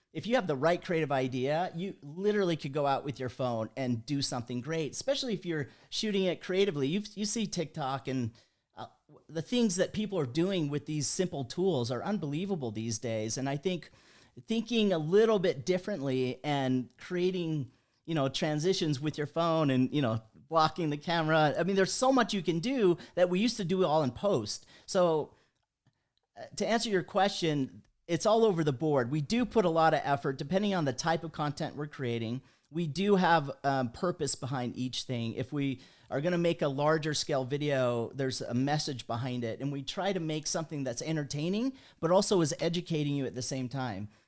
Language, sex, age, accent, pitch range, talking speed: English, male, 40-59, American, 135-180 Hz, 205 wpm